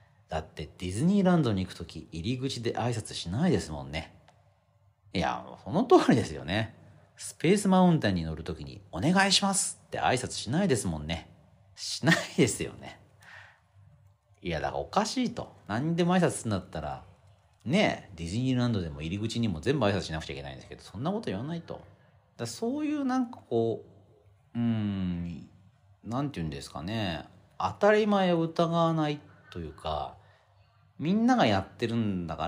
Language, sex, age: Japanese, male, 40-59